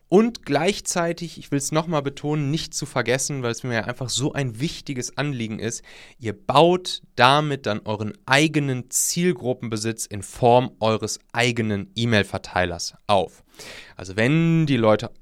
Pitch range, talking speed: 110-140 Hz, 140 wpm